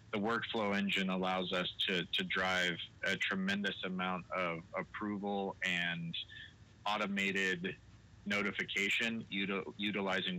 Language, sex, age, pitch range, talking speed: English, male, 30-49, 90-105 Hz, 105 wpm